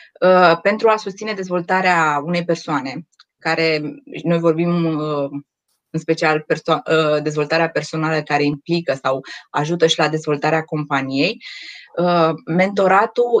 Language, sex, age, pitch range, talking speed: Romanian, female, 20-39, 160-195 Hz, 105 wpm